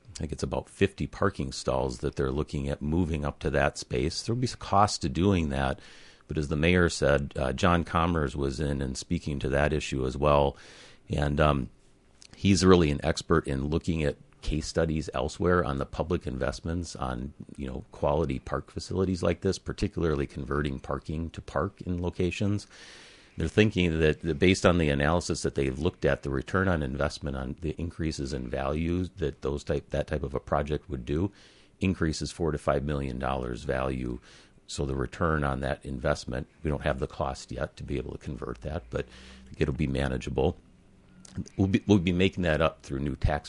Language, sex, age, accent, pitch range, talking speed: English, male, 40-59, American, 70-85 Hz, 195 wpm